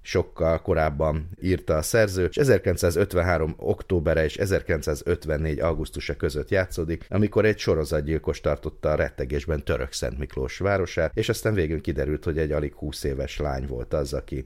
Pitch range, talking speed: 70-85 Hz, 150 wpm